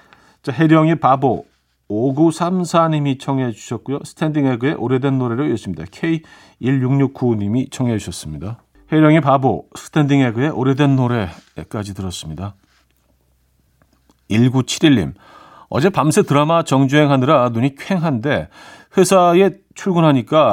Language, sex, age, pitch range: Korean, male, 40-59, 110-155 Hz